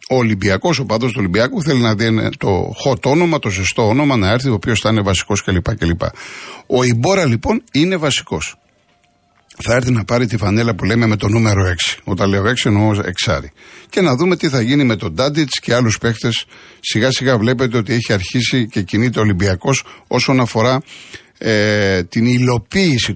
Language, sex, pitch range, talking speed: Greek, male, 105-135 Hz, 190 wpm